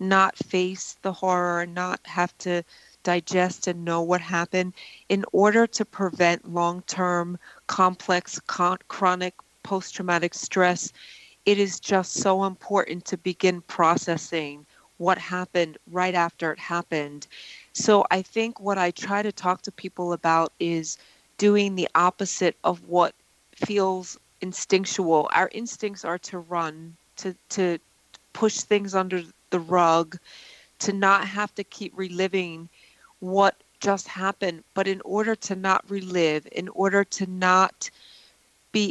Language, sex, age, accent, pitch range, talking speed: English, female, 30-49, American, 175-195 Hz, 135 wpm